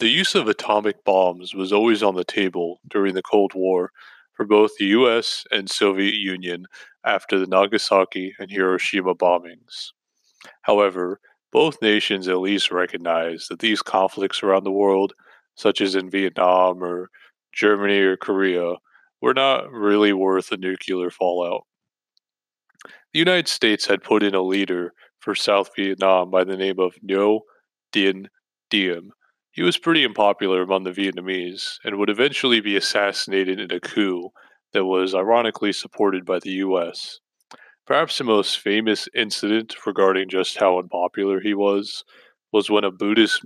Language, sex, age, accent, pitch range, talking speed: English, male, 30-49, American, 90-100 Hz, 150 wpm